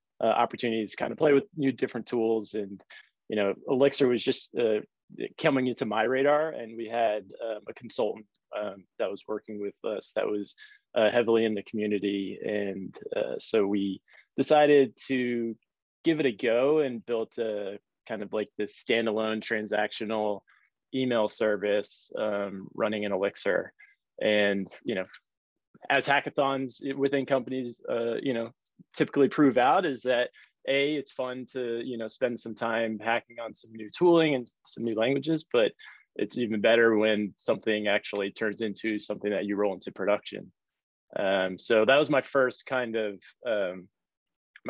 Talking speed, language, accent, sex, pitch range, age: 165 wpm, English, American, male, 105-140 Hz, 20-39